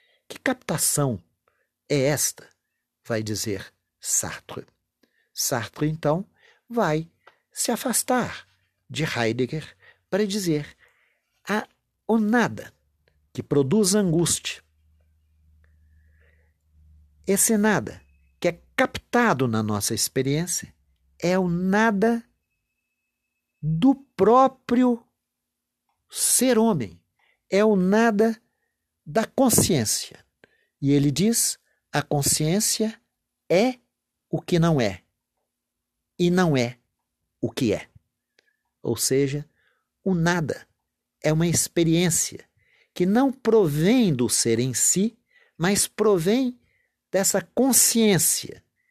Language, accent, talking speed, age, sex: Portuguese, Brazilian, 90 wpm, 50-69, male